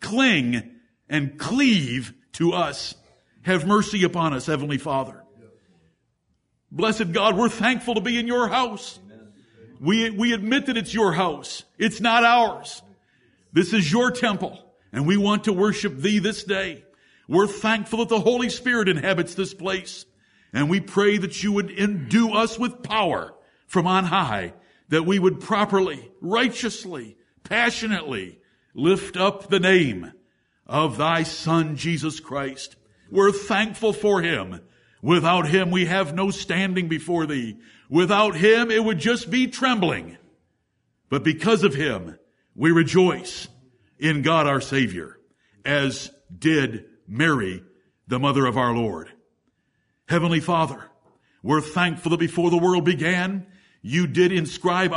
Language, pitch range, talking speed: English, 150-210 Hz, 140 wpm